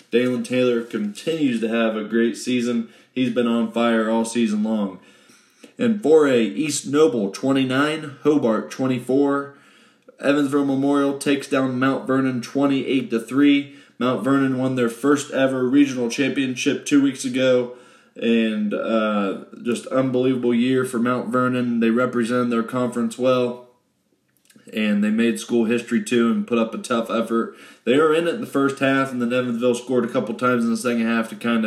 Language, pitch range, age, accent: English, 115-140 Hz, 20-39, American